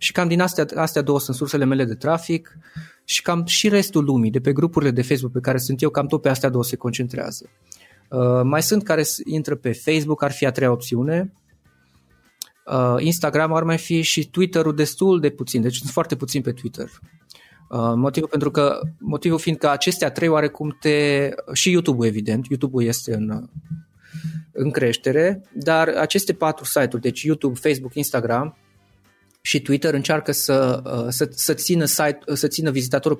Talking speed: 165 wpm